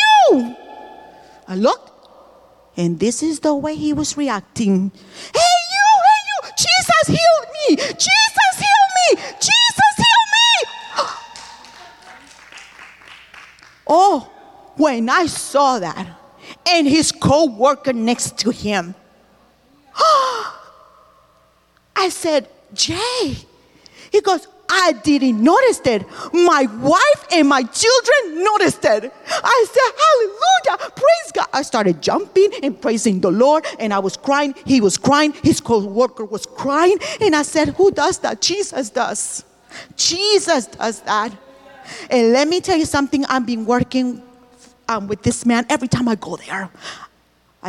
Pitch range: 230-360 Hz